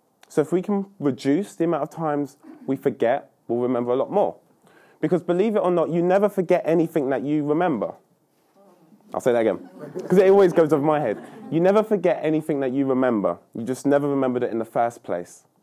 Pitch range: 130-180 Hz